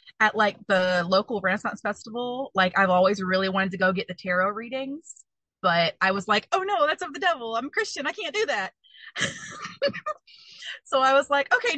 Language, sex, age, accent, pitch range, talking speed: English, female, 30-49, American, 195-255 Hz, 195 wpm